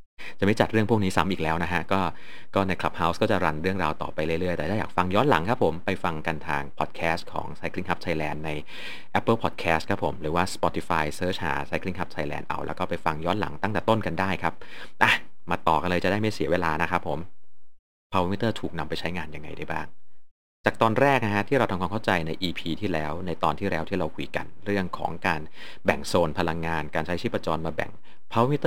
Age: 30-49